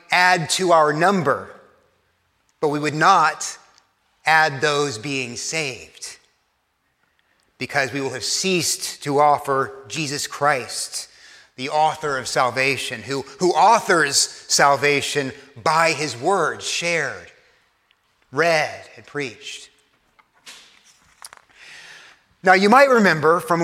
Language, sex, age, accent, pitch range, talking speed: English, male, 30-49, American, 140-180 Hz, 105 wpm